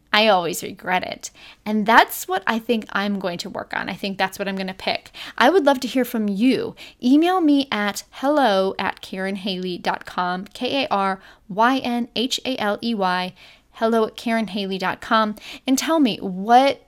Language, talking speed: English, 155 wpm